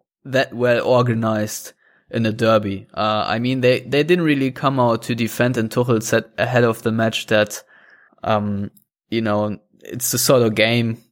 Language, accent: English, German